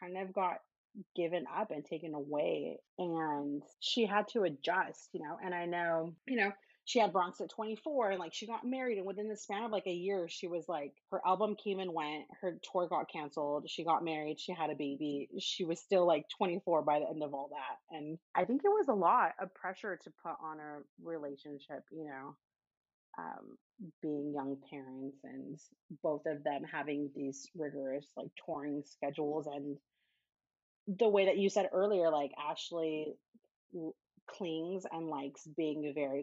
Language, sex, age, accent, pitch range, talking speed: English, female, 30-49, American, 145-185 Hz, 190 wpm